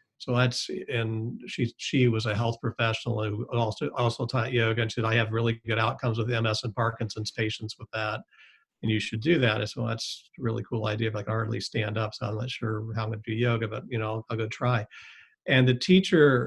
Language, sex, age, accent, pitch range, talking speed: English, male, 50-69, American, 110-125 Hz, 250 wpm